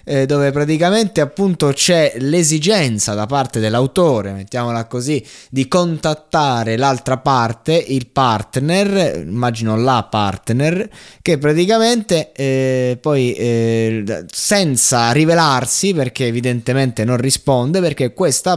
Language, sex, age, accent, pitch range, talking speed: Italian, male, 20-39, native, 120-160 Hz, 105 wpm